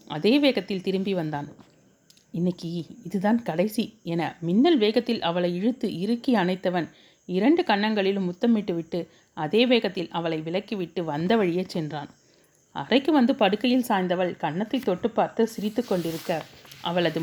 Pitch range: 165-225 Hz